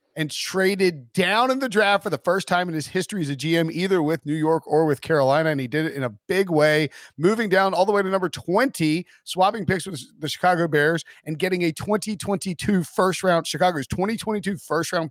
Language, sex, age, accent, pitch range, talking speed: English, male, 30-49, American, 140-175 Hz, 220 wpm